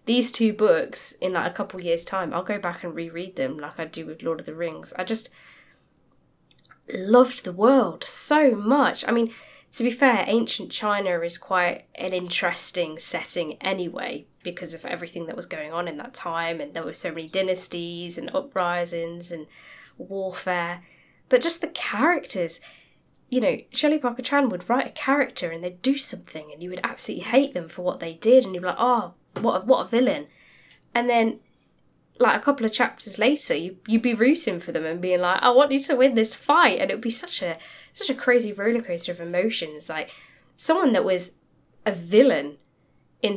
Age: 10-29